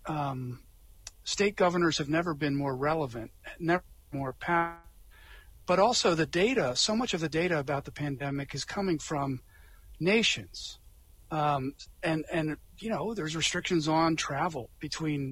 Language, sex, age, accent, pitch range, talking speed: English, male, 40-59, American, 135-165 Hz, 145 wpm